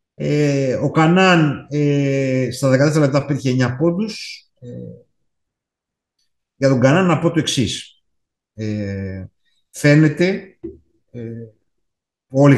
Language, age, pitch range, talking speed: Greek, 50-69, 105-155 Hz, 80 wpm